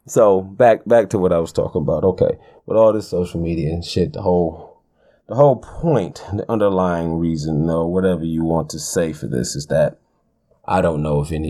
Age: 30-49